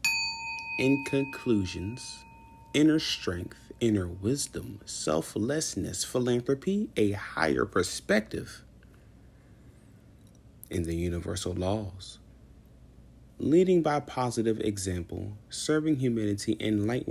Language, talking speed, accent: English, 80 wpm, American